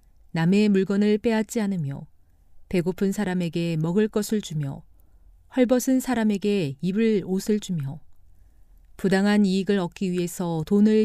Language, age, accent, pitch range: Korean, 40-59, native, 145-215 Hz